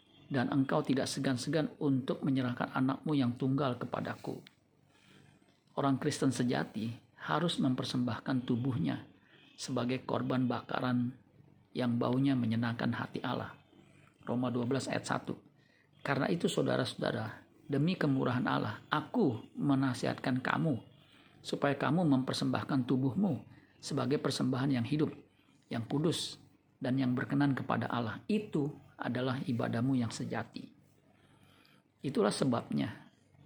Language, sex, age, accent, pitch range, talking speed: Indonesian, male, 50-69, native, 125-140 Hz, 105 wpm